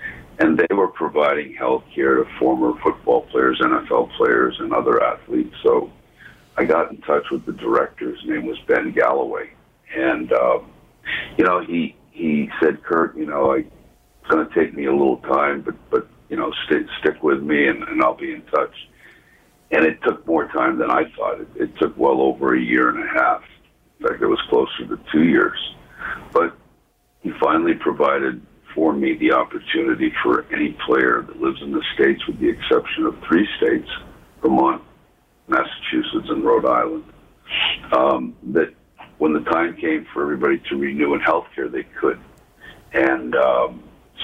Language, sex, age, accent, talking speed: English, male, 60-79, American, 175 wpm